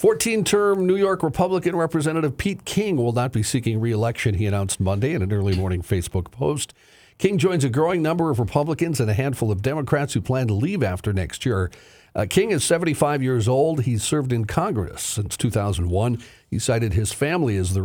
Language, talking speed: English, 195 wpm